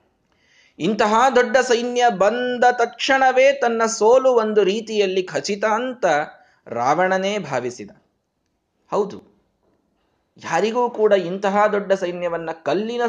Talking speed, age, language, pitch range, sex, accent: 90 wpm, 20-39, Kannada, 155-210 Hz, male, native